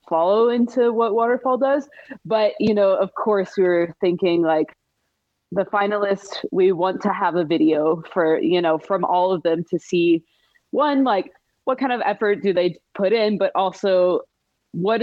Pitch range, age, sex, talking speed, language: 160-200 Hz, 20-39, female, 175 wpm, English